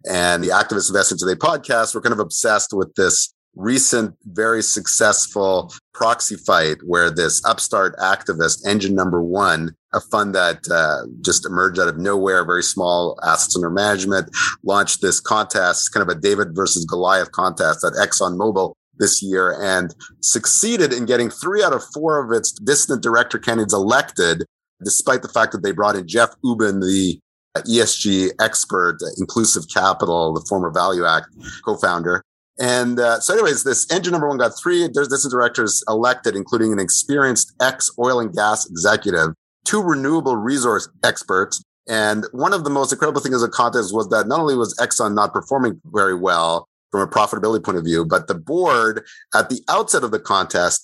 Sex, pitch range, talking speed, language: male, 95-125 Hz, 175 wpm, English